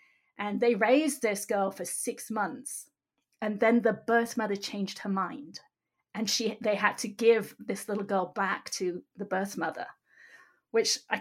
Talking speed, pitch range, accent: 170 wpm, 205-245 Hz, British